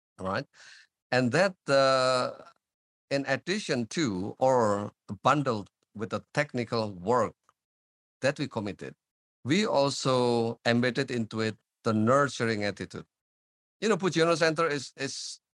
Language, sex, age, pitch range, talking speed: English, male, 50-69, 110-140 Hz, 115 wpm